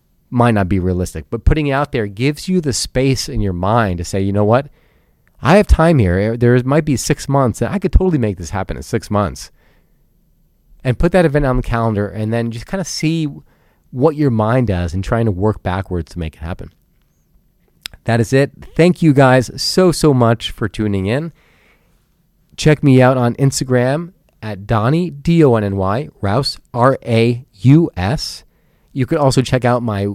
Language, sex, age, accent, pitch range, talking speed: English, male, 30-49, American, 105-145 Hz, 185 wpm